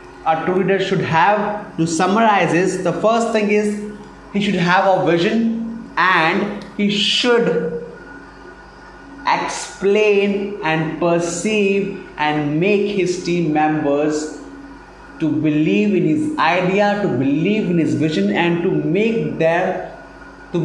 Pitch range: 160-205 Hz